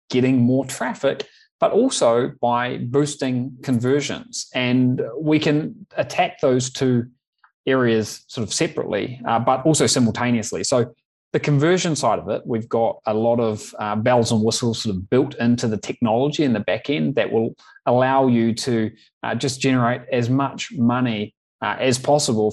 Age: 20-39